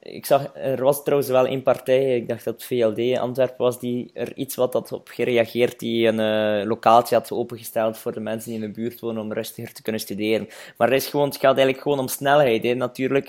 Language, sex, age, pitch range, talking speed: Dutch, male, 20-39, 120-140 Hz, 240 wpm